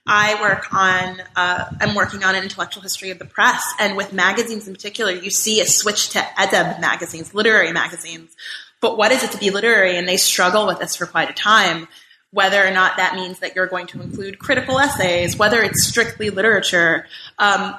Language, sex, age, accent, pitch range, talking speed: English, female, 20-39, American, 180-210 Hz, 200 wpm